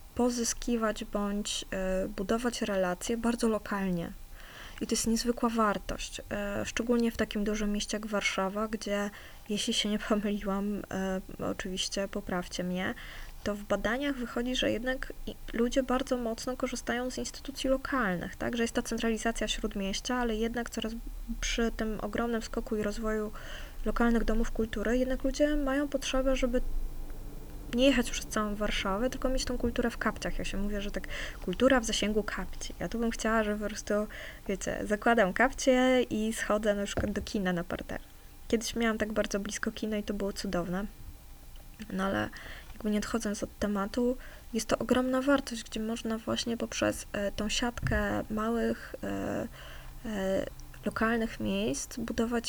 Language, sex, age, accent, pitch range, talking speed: Polish, female, 20-39, native, 205-240 Hz, 150 wpm